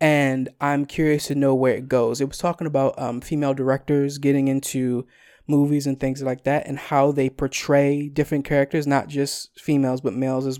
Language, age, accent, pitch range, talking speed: English, 20-39, American, 135-155 Hz, 190 wpm